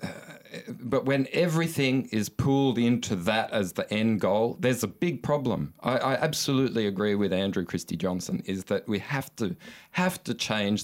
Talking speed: 175 wpm